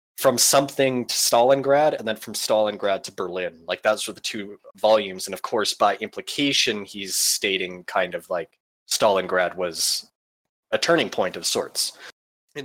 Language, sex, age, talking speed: English, male, 20-39, 160 wpm